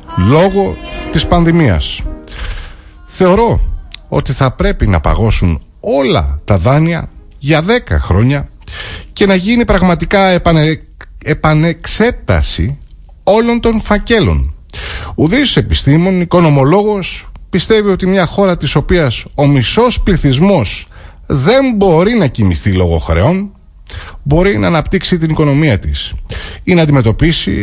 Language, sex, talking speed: Greek, male, 110 wpm